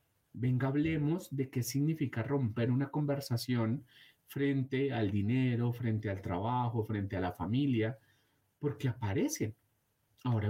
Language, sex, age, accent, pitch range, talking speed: Spanish, male, 30-49, Colombian, 120-155 Hz, 120 wpm